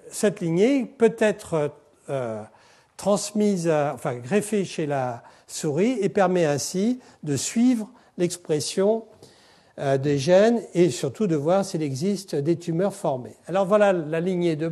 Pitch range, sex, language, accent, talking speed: 160-220 Hz, male, French, French, 130 wpm